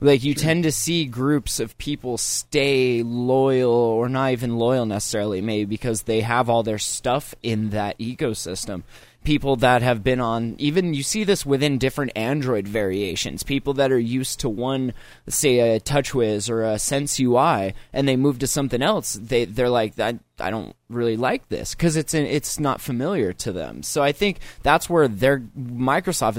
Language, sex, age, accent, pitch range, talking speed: English, male, 20-39, American, 110-140 Hz, 185 wpm